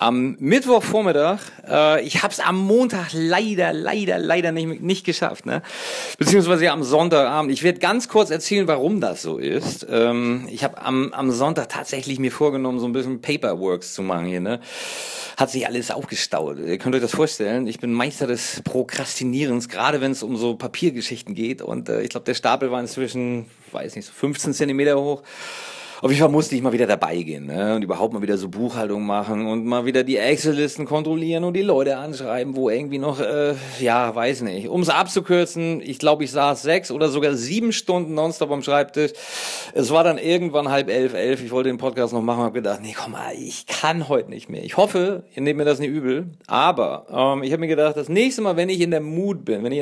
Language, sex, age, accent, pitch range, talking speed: English, male, 40-59, German, 125-165 Hz, 210 wpm